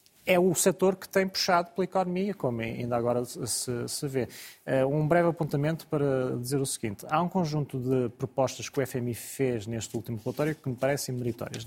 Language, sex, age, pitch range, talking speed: Portuguese, male, 20-39, 120-140 Hz, 185 wpm